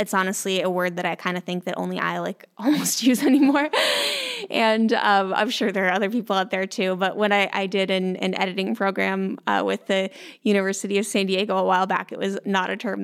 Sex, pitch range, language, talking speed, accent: female, 185-210 Hz, English, 235 wpm, American